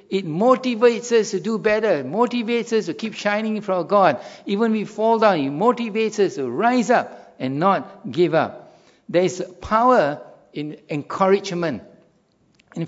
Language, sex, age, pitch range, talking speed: English, male, 60-79, 165-210 Hz, 165 wpm